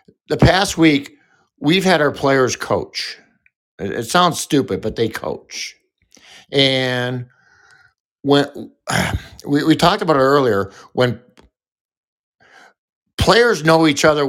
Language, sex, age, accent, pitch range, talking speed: English, male, 60-79, American, 120-155 Hz, 115 wpm